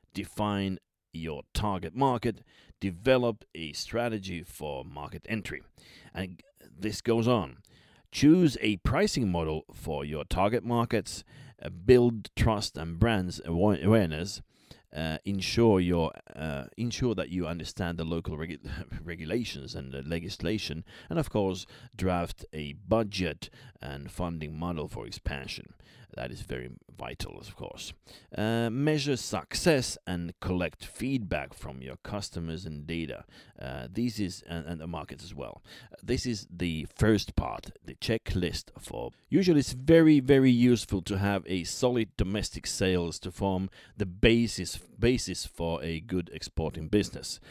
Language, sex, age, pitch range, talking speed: English, male, 30-49, 80-110 Hz, 140 wpm